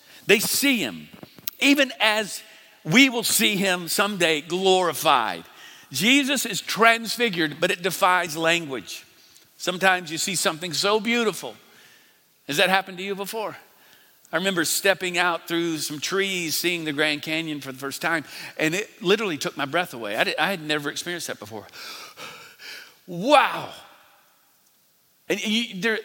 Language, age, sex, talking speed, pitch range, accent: English, 50-69, male, 140 wpm, 150-200 Hz, American